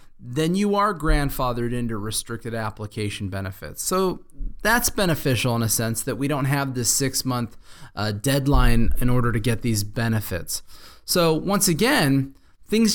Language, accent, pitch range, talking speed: English, American, 120-155 Hz, 145 wpm